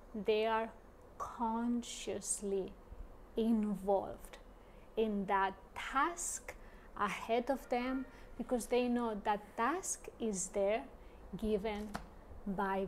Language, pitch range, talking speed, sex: English, 210-255 Hz, 90 wpm, female